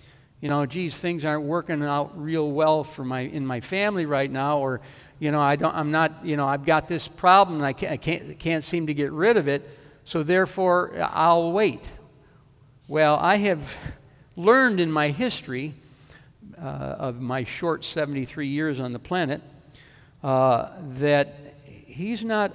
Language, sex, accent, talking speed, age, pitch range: English, male, American, 175 wpm, 60-79, 135-175 Hz